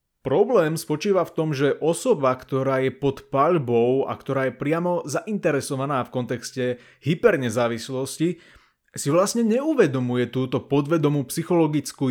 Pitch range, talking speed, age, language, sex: 135-180 Hz, 120 wpm, 30-49, Slovak, male